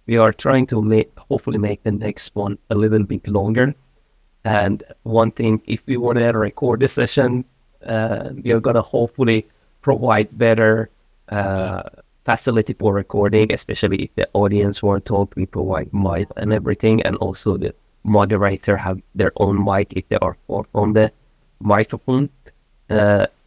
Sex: male